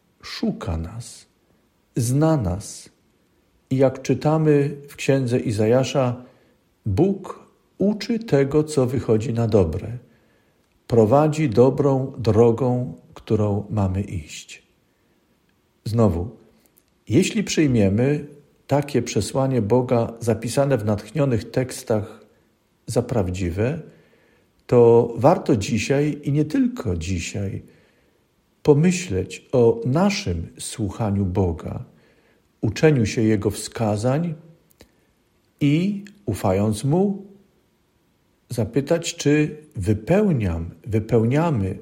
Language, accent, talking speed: Polish, native, 85 wpm